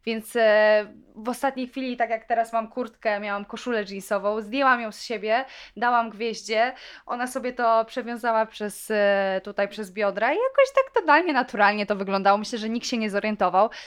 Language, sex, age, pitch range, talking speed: Polish, female, 20-39, 200-235 Hz, 165 wpm